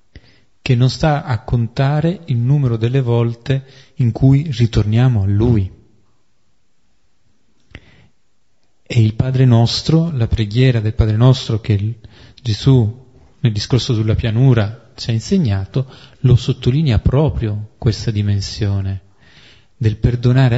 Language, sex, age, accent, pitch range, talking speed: Italian, male, 30-49, native, 105-130 Hz, 115 wpm